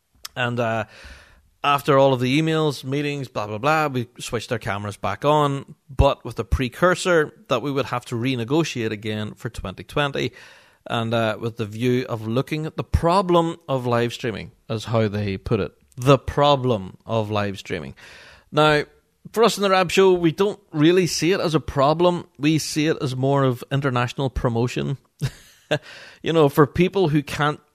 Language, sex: English, male